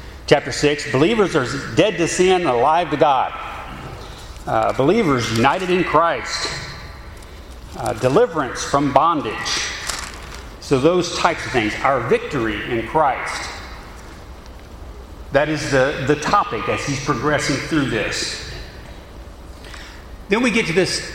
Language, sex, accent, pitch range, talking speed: English, male, American, 135-175 Hz, 125 wpm